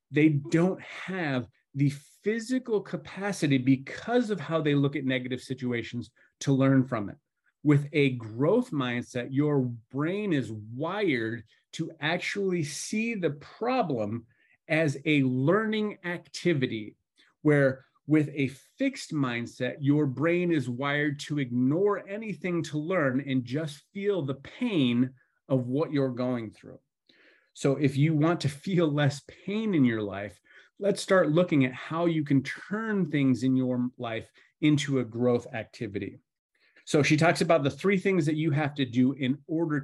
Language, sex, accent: English, male, American